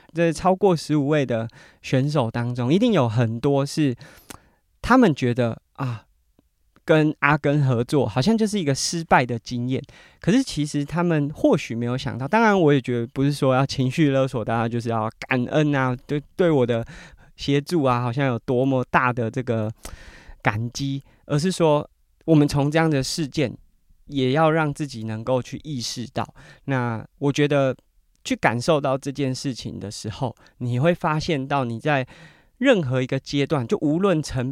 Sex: male